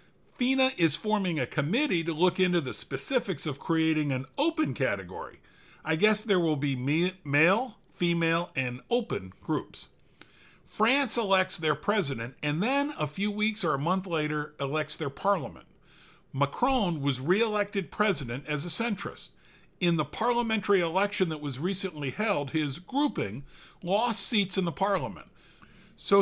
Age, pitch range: 50-69, 145-205 Hz